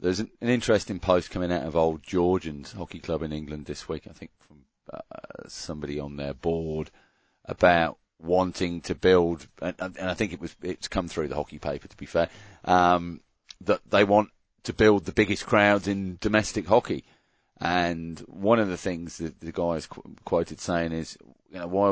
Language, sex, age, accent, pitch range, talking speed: English, male, 40-59, British, 80-95 Hz, 190 wpm